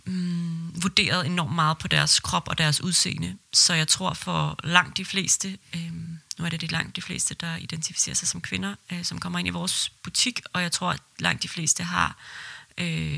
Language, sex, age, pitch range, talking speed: Danish, female, 30-49, 155-185 Hz, 190 wpm